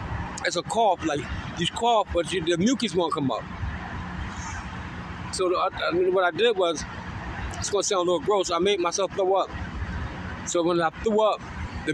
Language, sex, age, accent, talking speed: English, male, 20-39, American, 190 wpm